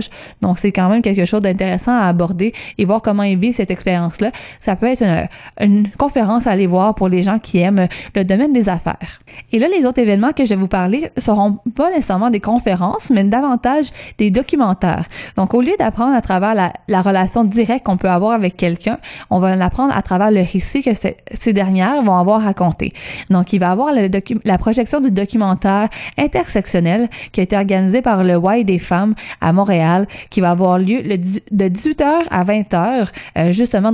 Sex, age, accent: female, 20-39, Canadian